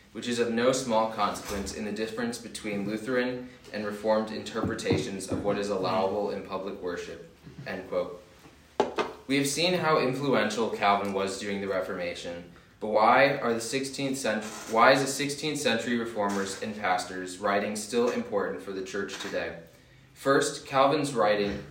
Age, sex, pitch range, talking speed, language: 20-39, male, 100-125 Hz, 160 wpm, English